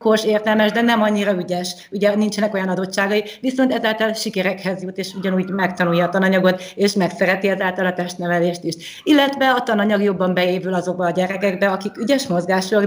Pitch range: 180-205 Hz